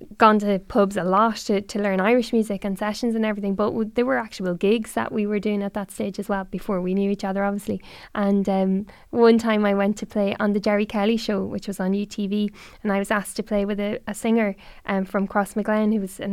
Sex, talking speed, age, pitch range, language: female, 255 wpm, 10-29, 200-225 Hz, English